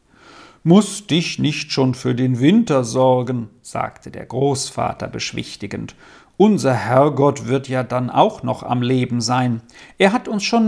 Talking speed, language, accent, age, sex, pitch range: 145 wpm, German, German, 50-69, male, 130-175 Hz